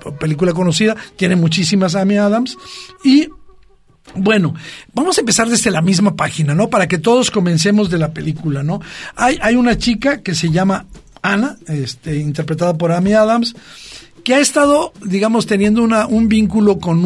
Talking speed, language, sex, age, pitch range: 160 wpm, Spanish, male, 50-69, 170-225 Hz